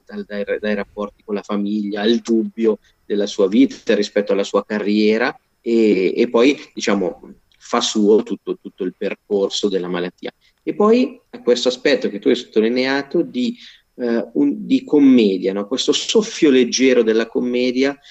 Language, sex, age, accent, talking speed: Italian, male, 40-59, native, 155 wpm